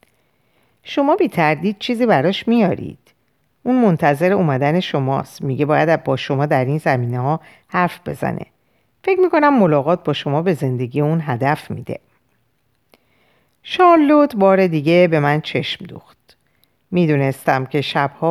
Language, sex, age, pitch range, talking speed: Persian, female, 50-69, 140-200 Hz, 130 wpm